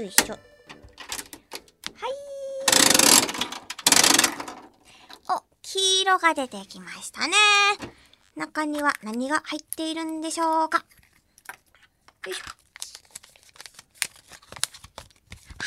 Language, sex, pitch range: Japanese, male, 225-360 Hz